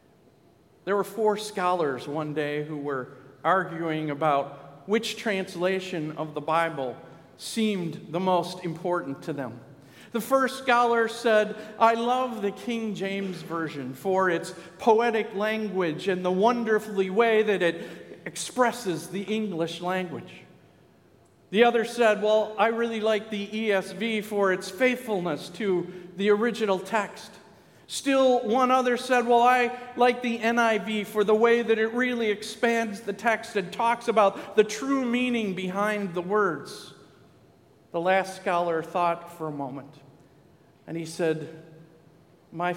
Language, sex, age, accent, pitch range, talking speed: English, male, 50-69, American, 165-225 Hz, 140 wpm